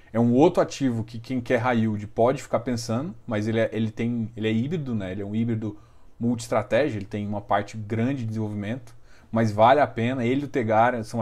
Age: 20-39